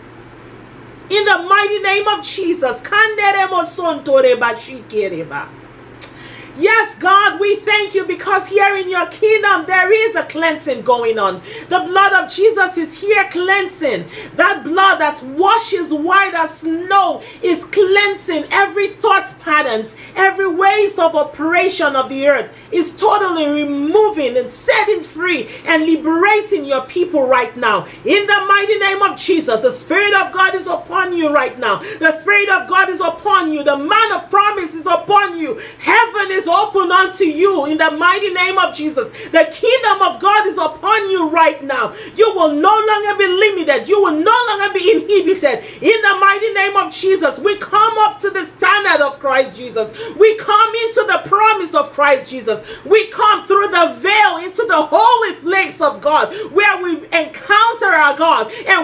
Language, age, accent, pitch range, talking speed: English, 40-59, Nigerian, 320-405 Hz, 170 wpm